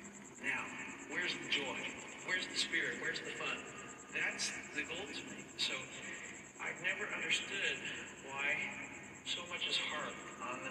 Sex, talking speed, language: male, 145 wpm, English